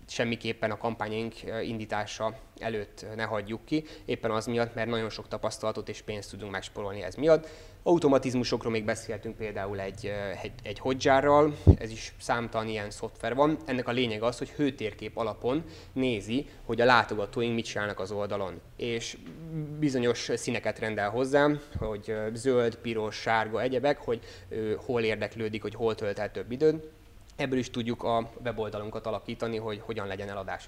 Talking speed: 155 wpm